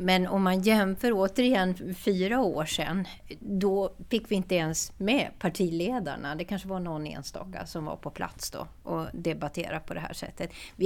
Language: Swedish